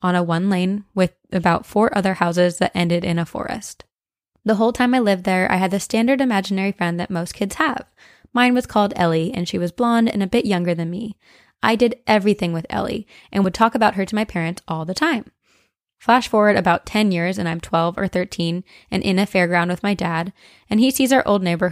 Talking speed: 230 wpm